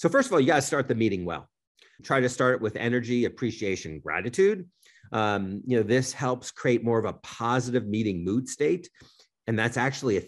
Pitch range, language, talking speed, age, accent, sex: 100-130 Hz, English, 205 wpm, 40-59, American, male